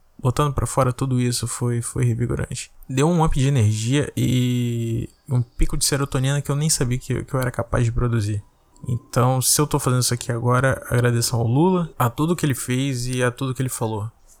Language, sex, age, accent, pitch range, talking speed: Portuguese, male, 20-39, Brazilian, 120-140 Hz, 215 wpm